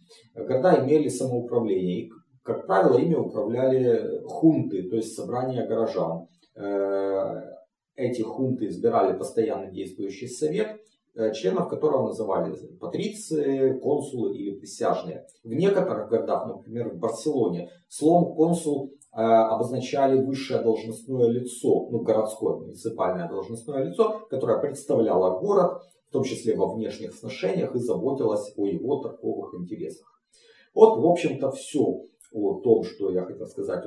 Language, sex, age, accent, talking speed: Russian, male, 40-59, native, 120 wpm